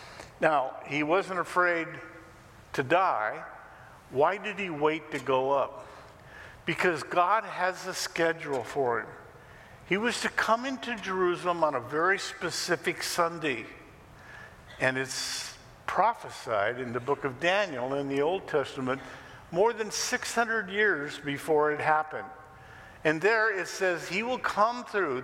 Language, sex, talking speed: English, male, 140 wpm